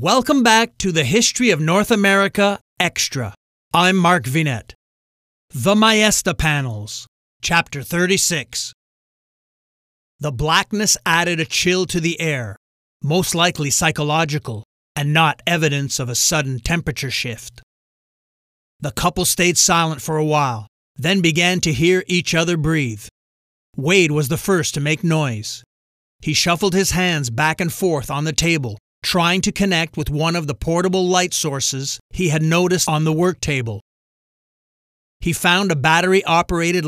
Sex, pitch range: male, 140-180 Hz